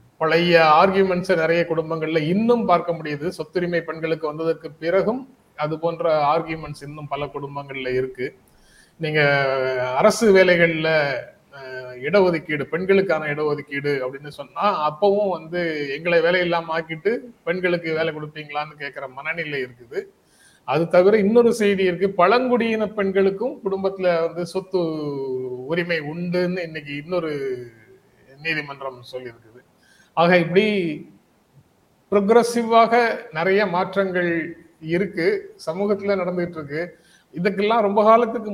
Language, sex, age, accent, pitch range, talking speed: Tamil, male, 30-49, native, 145-190 Hz, 100 wpm